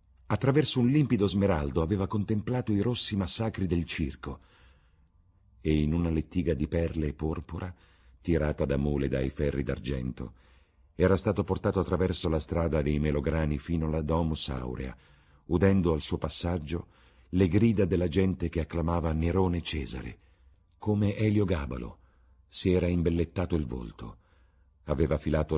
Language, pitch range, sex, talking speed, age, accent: Italian, 75-90 Hz, male, 140 wpm, 50-69, native